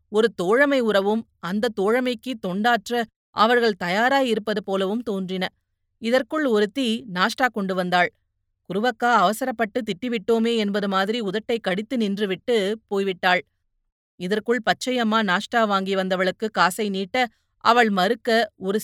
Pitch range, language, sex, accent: 185-235 Hz, Tamil, female, native